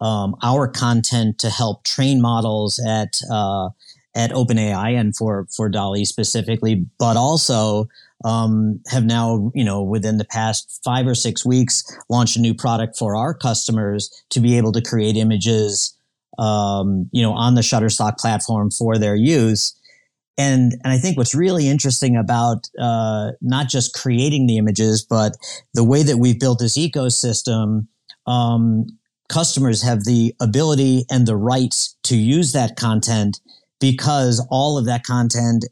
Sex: male